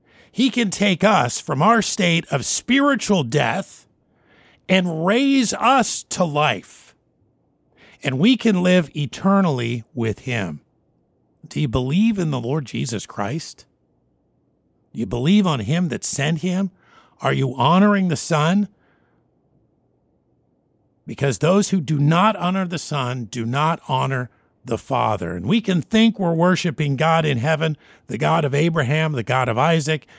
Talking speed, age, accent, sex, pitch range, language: 145 wpm, 50-69, American, male, 130-175 Hz, English